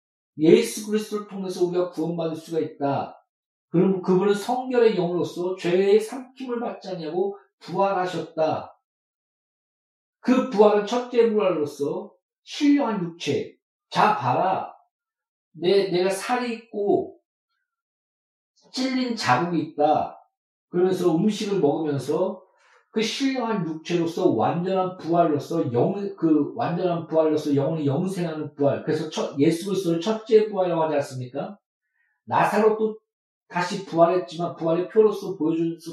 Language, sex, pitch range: Korean, male, 170-235 Hz